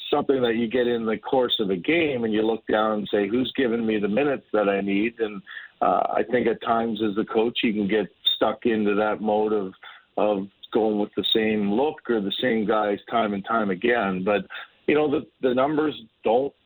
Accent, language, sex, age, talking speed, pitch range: American, English, male, 50-69, 225 wpm, 110-130 Hz